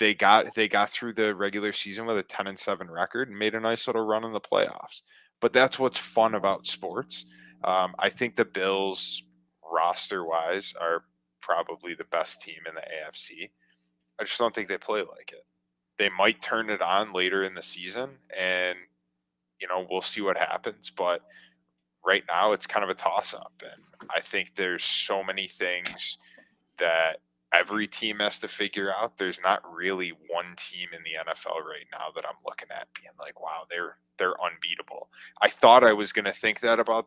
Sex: male